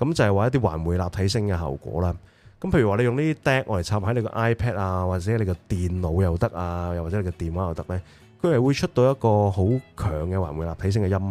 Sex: male